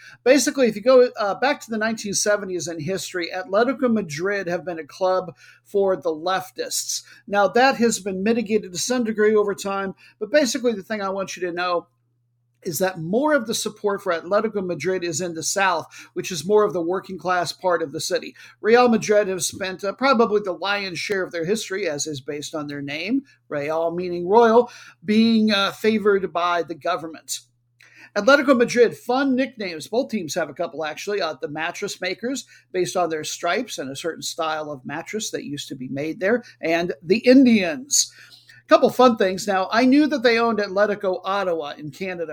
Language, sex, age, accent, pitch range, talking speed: English, male, 50-69, American, 170-225 Hz, 195 wpm